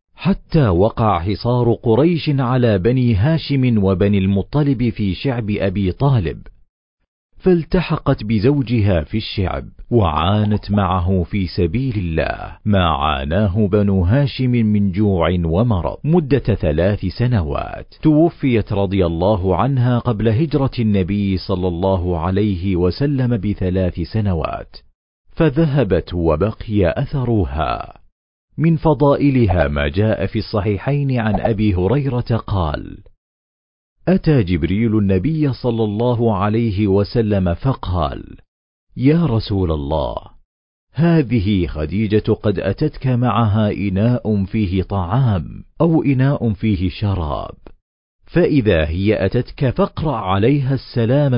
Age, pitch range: 40-59, 95-130 Hz